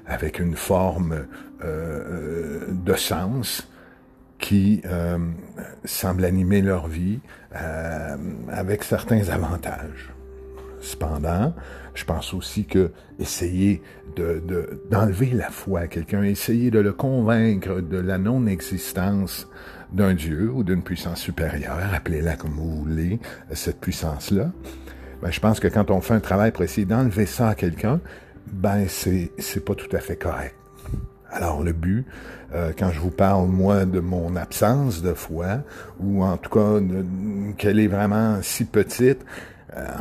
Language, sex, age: French, male, 60-79